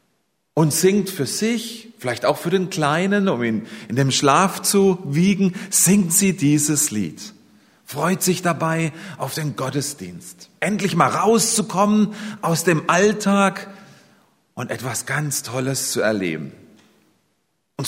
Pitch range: 135-205 Hz